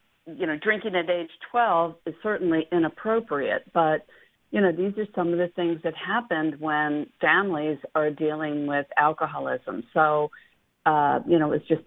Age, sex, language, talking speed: 50-69, female, English, 160 wpm